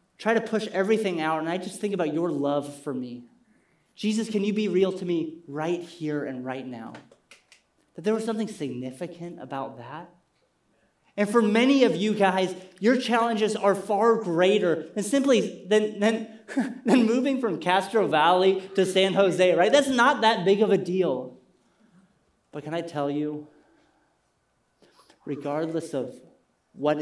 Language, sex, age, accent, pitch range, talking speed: English, male, 30-49, American, 145-195 Hz, 160 wpm